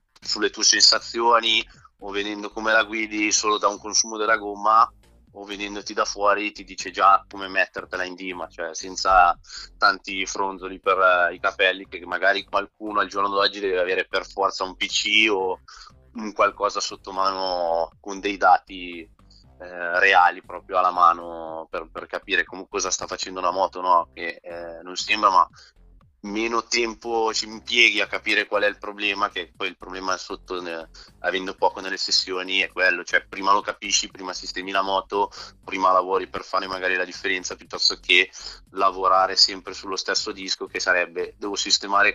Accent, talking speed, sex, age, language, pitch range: native, 170 wpm, male, 20-39, Italian, 95-105 Hz